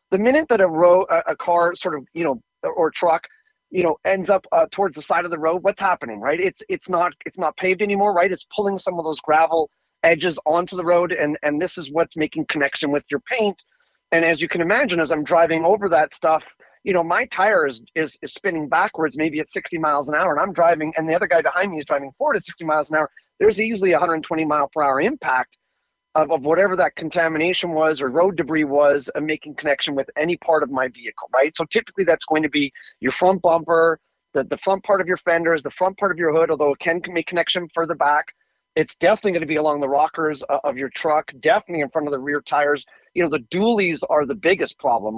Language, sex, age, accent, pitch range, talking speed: English, male, 40-59, American, 150-180 Hz, 245 wpm